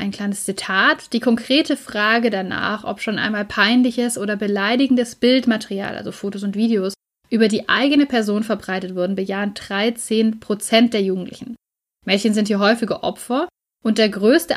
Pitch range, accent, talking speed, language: 215-260 Hz, German, 150 wpm, German